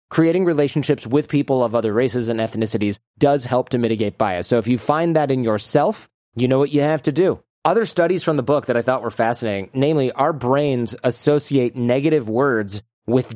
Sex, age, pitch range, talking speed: male, 30-49, 115-150 Hz, 200 wpm